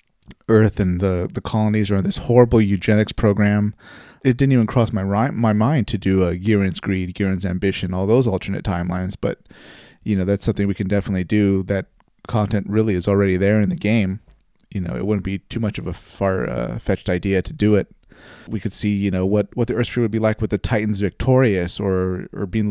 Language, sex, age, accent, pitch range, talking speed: English, male, 30-49, American, 95-110 Hz, 220 wpm